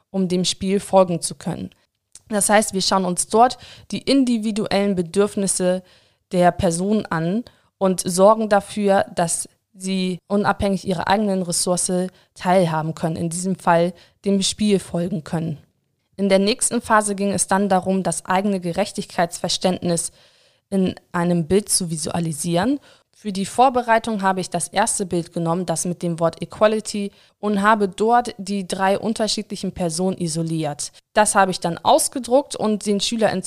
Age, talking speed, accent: 20-39, 145 wpm, German